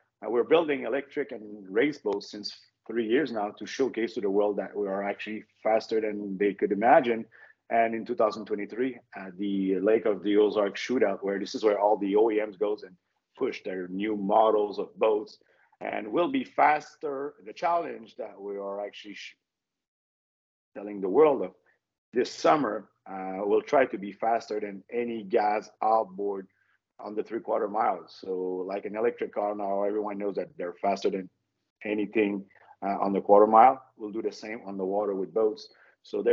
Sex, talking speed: male, 185 wpm